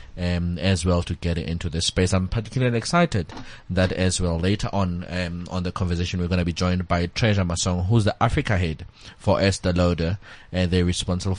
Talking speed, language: 205 wpm, English